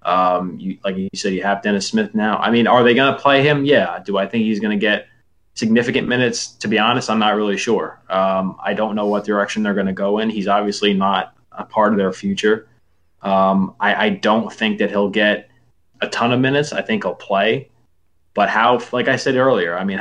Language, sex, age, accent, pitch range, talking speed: English, male, 20-39, American, 100-115 Hz, 235 wpm